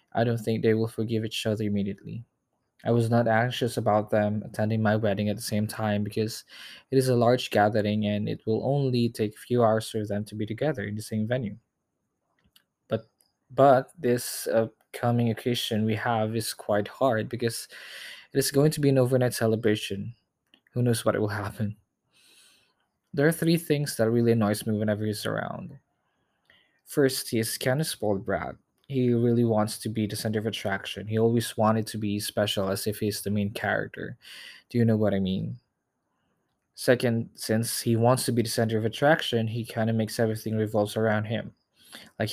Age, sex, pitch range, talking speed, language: 20-39, male, 105-120 Hz, 190 wpm, Filipino